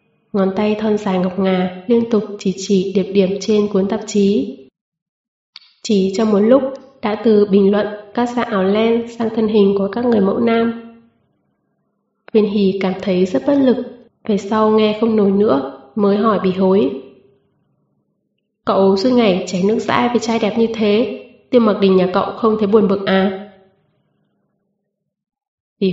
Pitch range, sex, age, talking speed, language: 195-225 Hz, female, 20-39, 175 wpm, Vietnamese